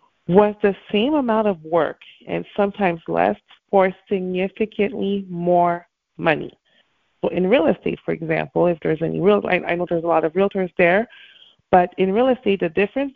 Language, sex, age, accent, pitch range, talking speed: English, female, 30-49, American, 170-205 Hz, 175 wpm